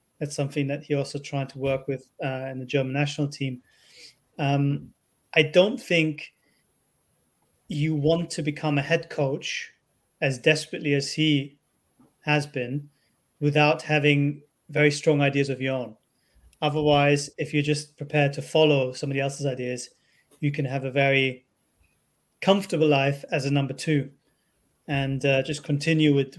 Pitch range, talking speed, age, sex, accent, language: 140-155 Hz, 150 wpm, 30-49, male, British, English